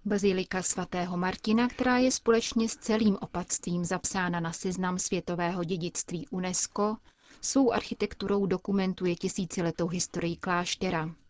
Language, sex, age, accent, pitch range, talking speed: Czech, female, 30-49, native, 175-200 Hz, 110 wpm